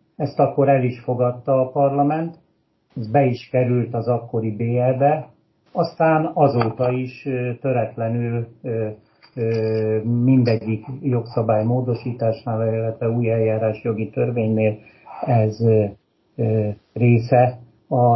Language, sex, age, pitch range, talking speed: Hungarian, male, 60-79, 110-130 Hz, 95 wpm